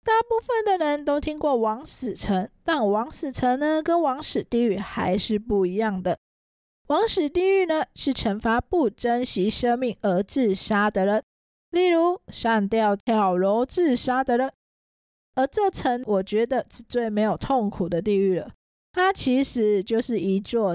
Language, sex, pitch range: Chinese, female, 205-275 Hz